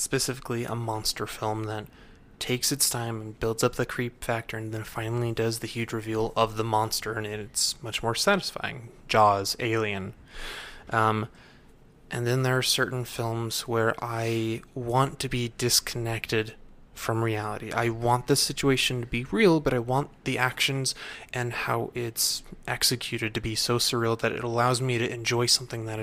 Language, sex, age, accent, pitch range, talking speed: English, male, 20-39, American, 115-130 Hz, 170 wpm